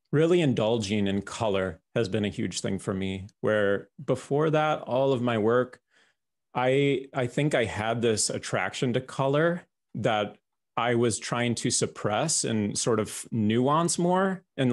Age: 30-49